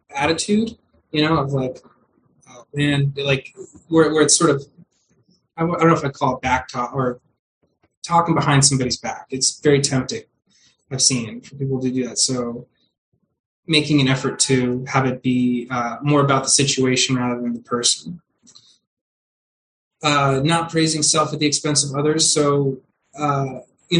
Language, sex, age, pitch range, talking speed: English, male, 20-39, 130-145 Hz, 165 wpm